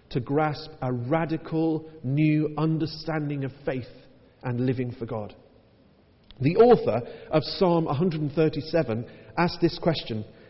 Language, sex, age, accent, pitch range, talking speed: English, male, 40-59, British, 120-170 Hz, 115 wpm